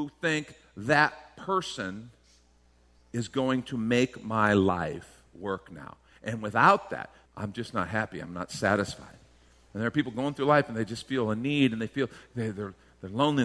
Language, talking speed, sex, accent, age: English, 180 wpm, male, American, 50-69